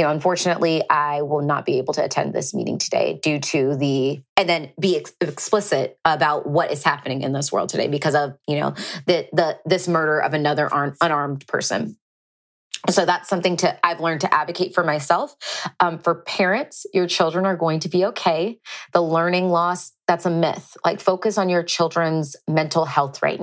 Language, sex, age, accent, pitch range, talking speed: English, female, 20-39, American, 150-180 Hz, 190 wpm